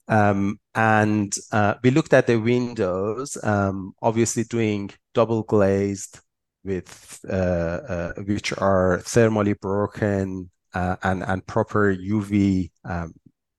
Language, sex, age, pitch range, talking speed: English, male, 30-49, 95-115 Hz, 115 wpm